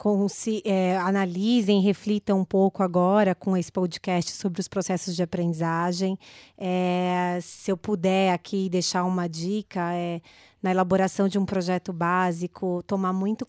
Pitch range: 185-220 Hz